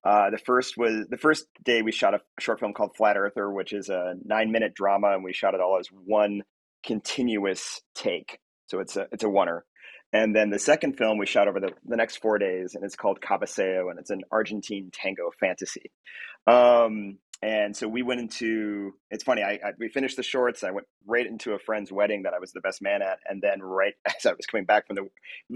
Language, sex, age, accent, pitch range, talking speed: English, male, 30-49, American, 95-120 Hz, 225 wpm